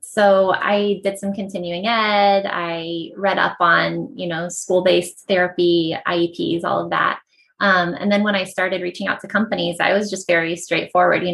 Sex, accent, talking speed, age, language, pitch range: female, American, 180 wpm, 20-39, English, 175-205 Hz